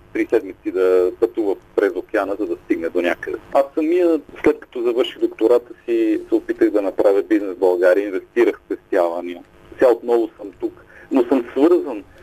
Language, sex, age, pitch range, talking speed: Bulgarian, male, 50-69, 325-395 Hz, 165 wpm